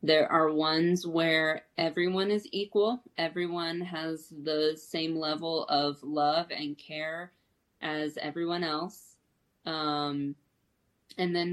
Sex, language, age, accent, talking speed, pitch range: female, English, 20-39, American, 115 wpm, 150-170 Hz